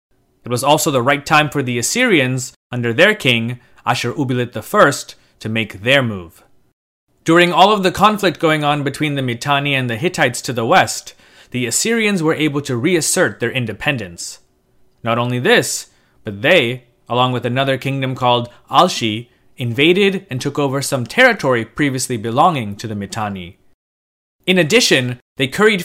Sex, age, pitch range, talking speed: male, 30-49, 115-155 Hz, 160 wpm